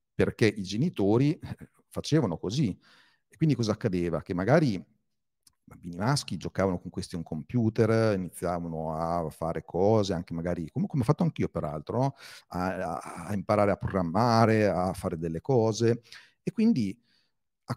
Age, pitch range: 40-59, 90-125 Hz